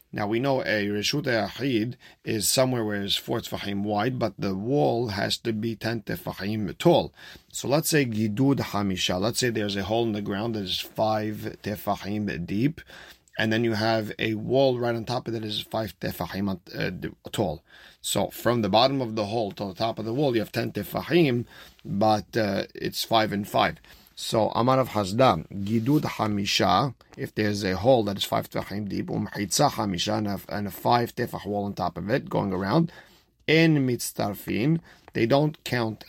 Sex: male